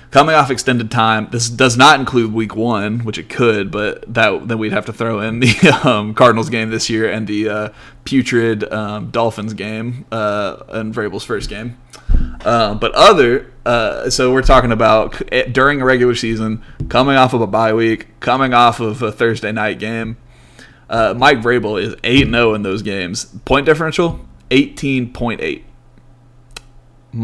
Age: 20-39